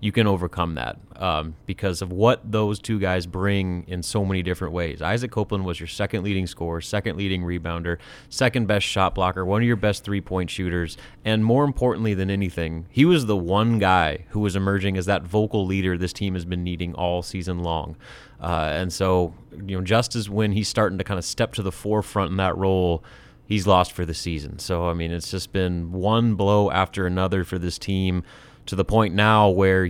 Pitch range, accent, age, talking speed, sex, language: 90-105 Hz, American, 30-49, 210 wpm, male, English